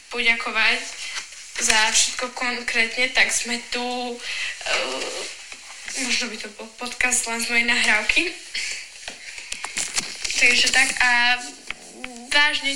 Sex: female